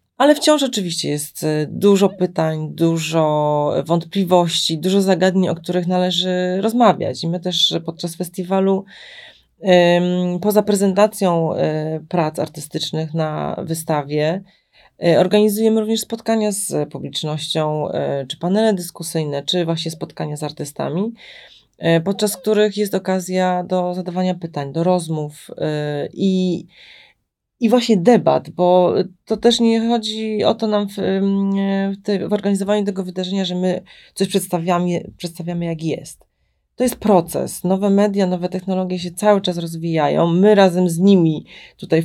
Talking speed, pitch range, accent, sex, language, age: 125 wpm, 165-205 Hz, native, female, Polish, 30-49